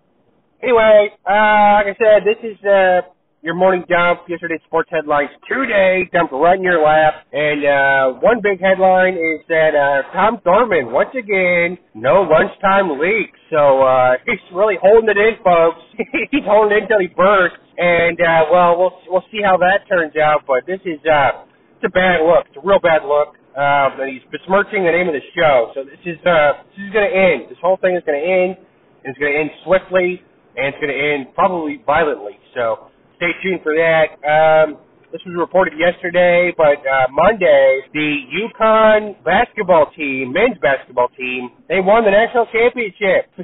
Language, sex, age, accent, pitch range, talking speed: English, male, 30-49, American, 150-195 Hz, 185 wpm